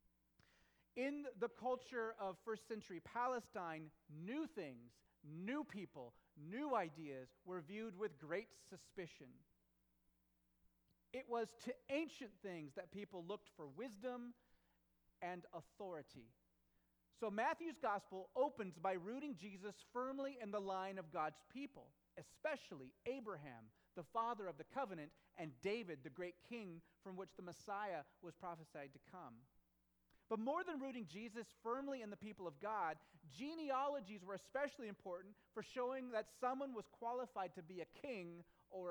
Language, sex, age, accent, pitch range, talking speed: English, male, 30-49, American, 160-225 Hz, 135 wpm